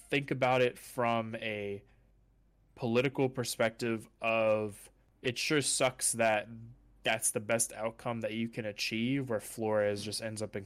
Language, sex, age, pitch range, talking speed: English, male, 20-39, 105-130 Hz, 145 wpm